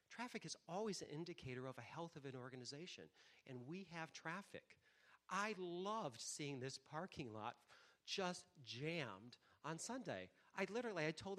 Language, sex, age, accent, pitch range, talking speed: English, male, 40-59, American, 125-180 Hz, 155 wpm